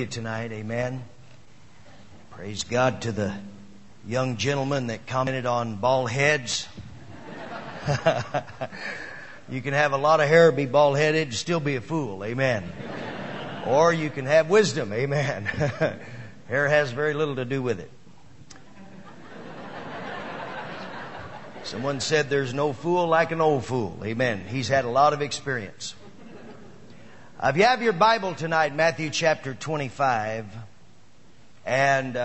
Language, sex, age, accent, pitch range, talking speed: English, male, 50-69, American, 115-170 Hz, 125 wpm